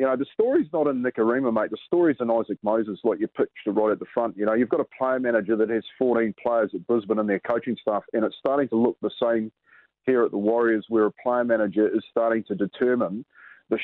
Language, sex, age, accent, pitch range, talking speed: English, male, 40-59, Australian, 115-140 Hz, 250 wpm